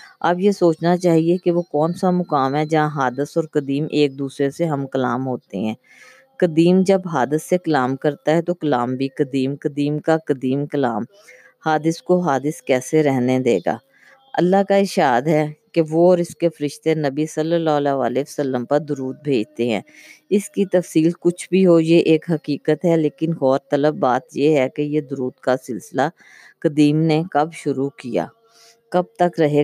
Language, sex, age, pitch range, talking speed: Urdu, female, 20-39, 135-170 Hz, 185 wpm